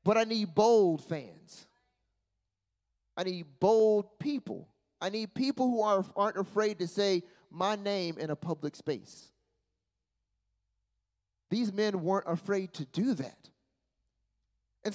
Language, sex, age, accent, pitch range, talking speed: English, male, 30-49, American, 165-230 Hz, 130 wpm